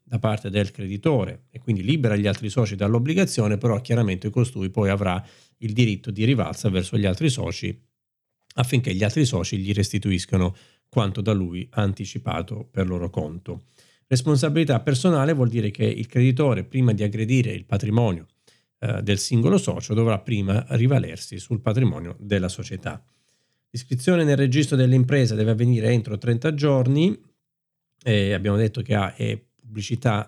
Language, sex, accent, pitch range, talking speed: Italian, male, native, 105-130 Hz, 145 wpm